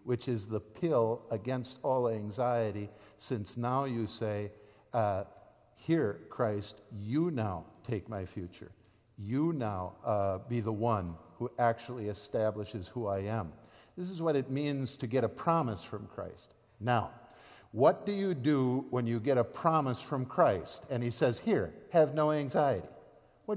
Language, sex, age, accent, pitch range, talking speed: English, male, 50-69, American, 105-135 Hz, 160 wpm